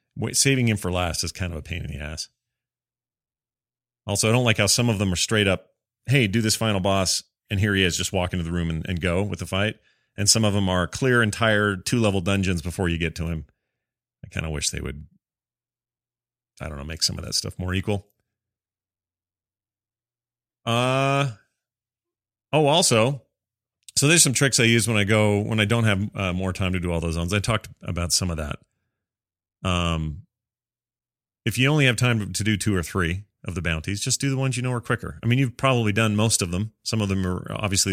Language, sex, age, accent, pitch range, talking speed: English, male, 30-49, American, 90-120 Hz, 220 wpm